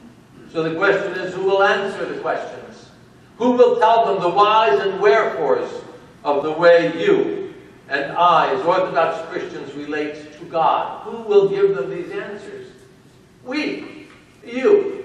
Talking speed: 150 wpm